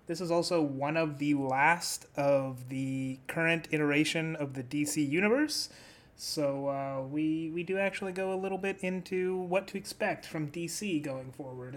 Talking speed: 170 wpm